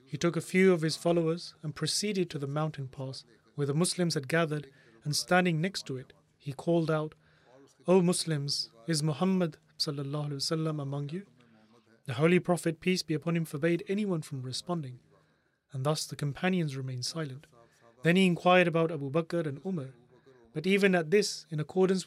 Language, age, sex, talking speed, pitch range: English, 30-49, male, 170 wpm, 140-170 Hz